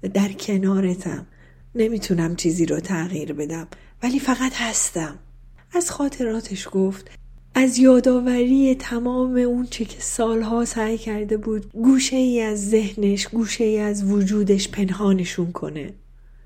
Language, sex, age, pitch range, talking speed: Persian, female, 40-59, 170-230 Hz, 115 wpm